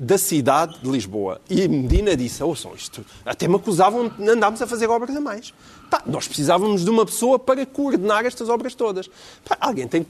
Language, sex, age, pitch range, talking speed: Portuguese, male, 40-59, 165-225 Hz, 200 wpm